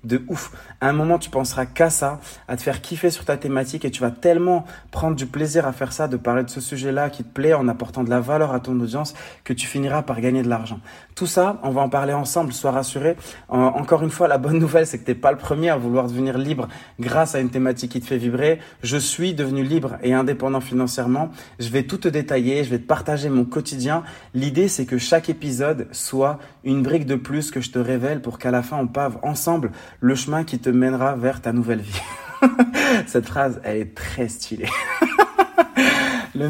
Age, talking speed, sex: 30-49, 225 wpm, male